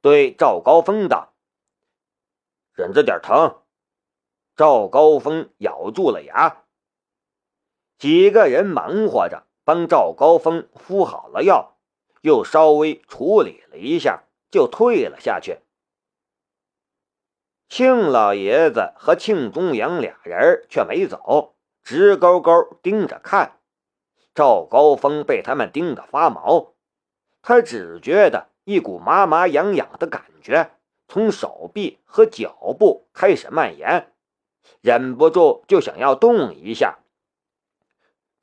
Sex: male